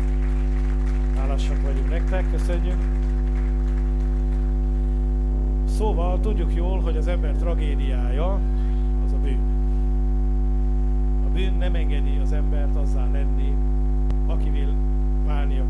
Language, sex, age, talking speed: English, male, 50-69, 90 wpm